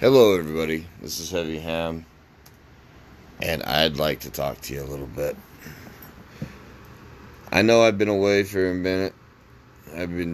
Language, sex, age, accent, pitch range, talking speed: English, male, 30-49, American, 75-95 Hz, 150 wpm